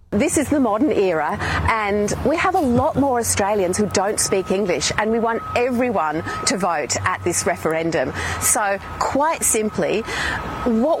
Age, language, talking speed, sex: 40-59, English, 160 wpm, female